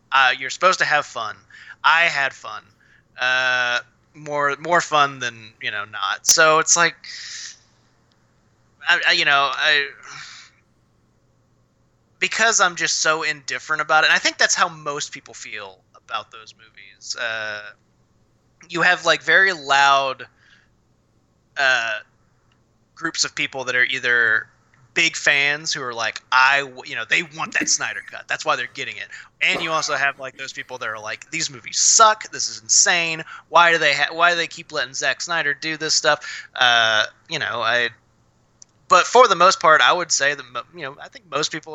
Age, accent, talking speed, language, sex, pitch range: 20-39, American, 175 wpm, English, male, 130-170 Hz